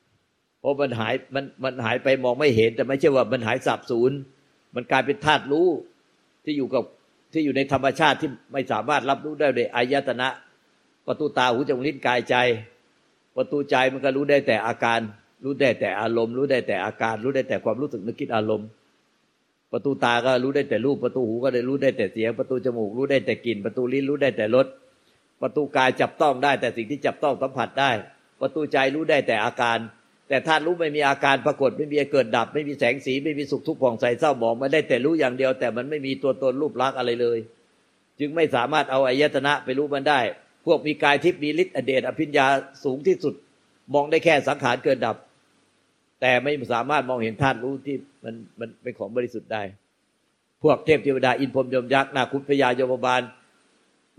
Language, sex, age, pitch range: Thai, male, 60-79, 125-145 Hz